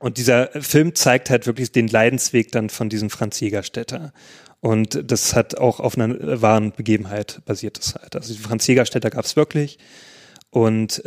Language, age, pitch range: German, 30-49, 115-140 Hz